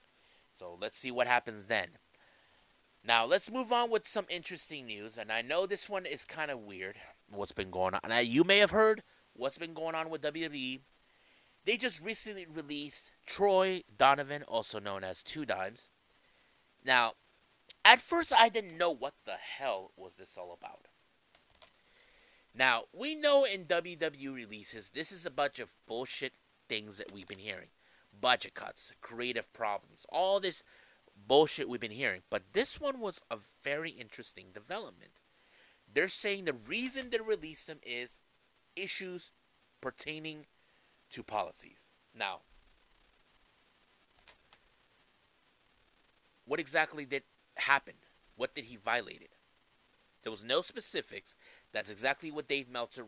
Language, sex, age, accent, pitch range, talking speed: English, male, 30-49, American, 120-195 Hz, 145 wpm